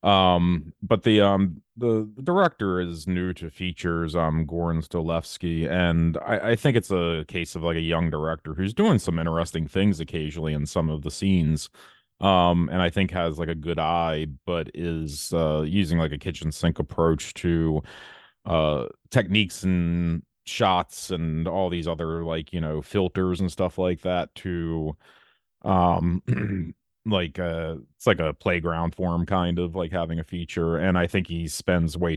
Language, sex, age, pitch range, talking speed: English, male, 30-49, 80-90 Hz, 170 wpm